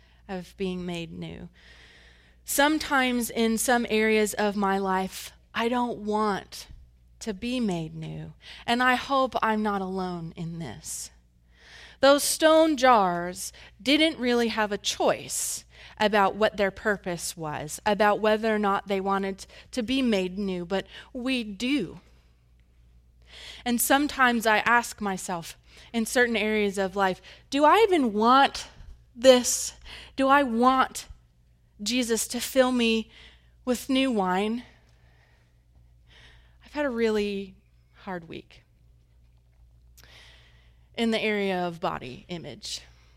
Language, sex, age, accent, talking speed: English, female, 20-39, American, 125 wpm